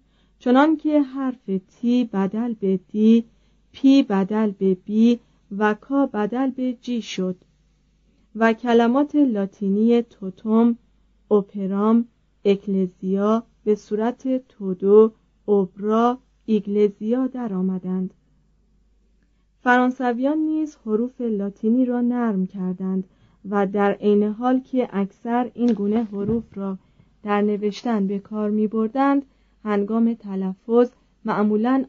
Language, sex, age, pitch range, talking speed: Persian, female, 30-49, 200-245 Hz, 100 wpm